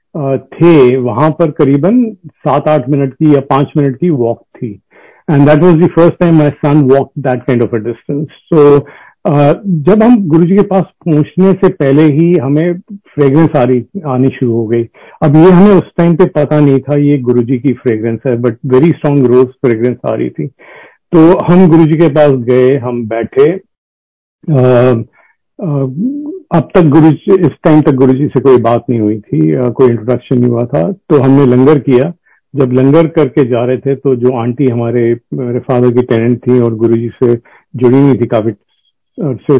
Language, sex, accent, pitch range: Hindi, male, native, 125-160 Hz